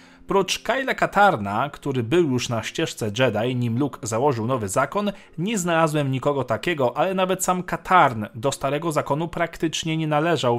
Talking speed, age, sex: 160 wpm, 40-59, male